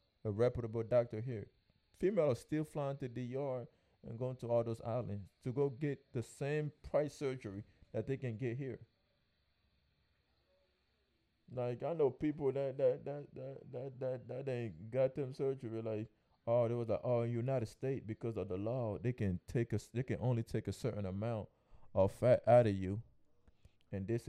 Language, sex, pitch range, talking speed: English, male, 105-135 Hz, 180 wpm